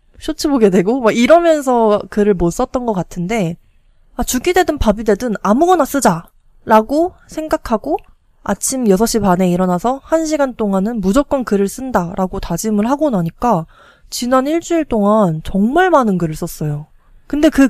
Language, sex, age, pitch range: Korean, female, 20-39, 195-290 Hz